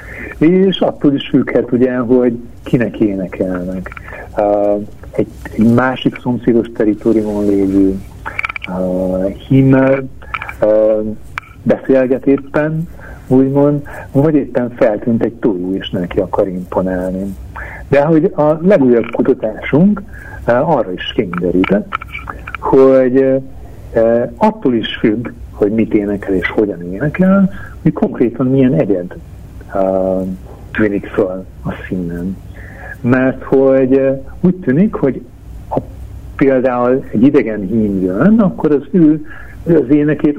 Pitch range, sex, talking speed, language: 100-145 Hz, male, 105 wpm, Hungarian